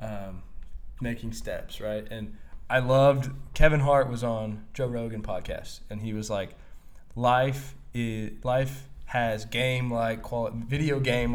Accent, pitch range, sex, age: American, 110-140 Hz, male, 20-39